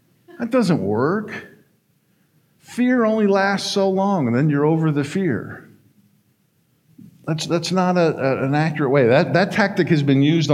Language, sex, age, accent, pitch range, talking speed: English, male, 50-69, American, 135-200 Hz, 150 wpm